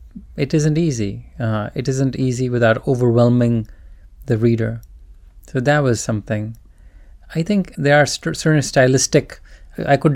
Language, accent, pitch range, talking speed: English, Indian, 110-135 Hz, 140 wpm